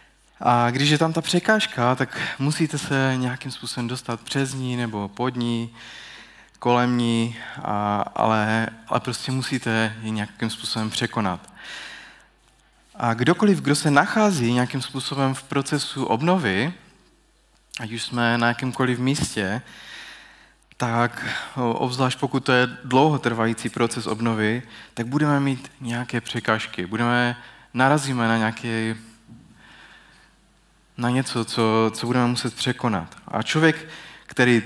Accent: native